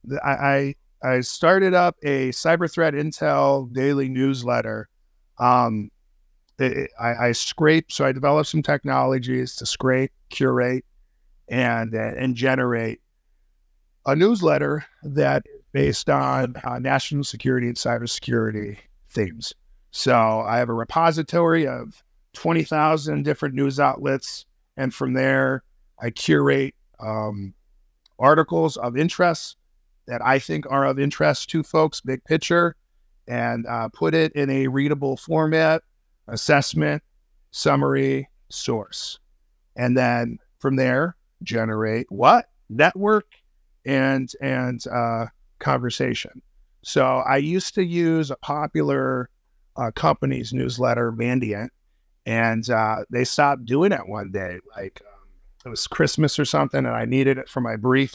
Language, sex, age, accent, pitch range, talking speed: English, male, 50-69, American, 115-150 Hz, 125 wpm